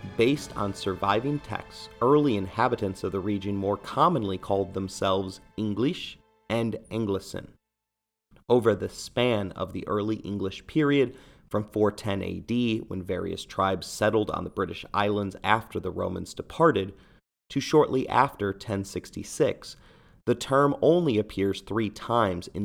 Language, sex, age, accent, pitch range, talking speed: English, male, 30-49, American, 95-115 Hz, 130 wpm